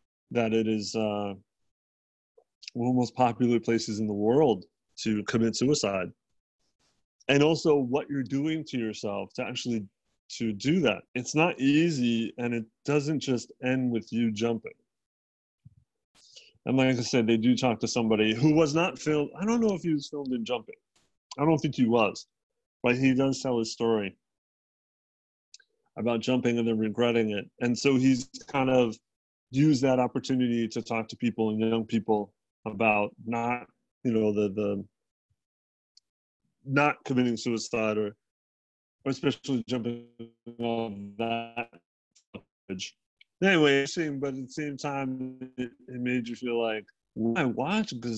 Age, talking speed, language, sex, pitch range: 30-49, 155 wpm, English, male, 115-150 Hz